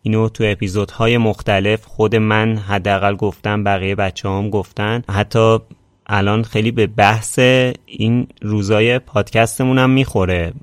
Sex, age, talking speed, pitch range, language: male, 30-49, 115 wpm, 95-115 Hz, Persian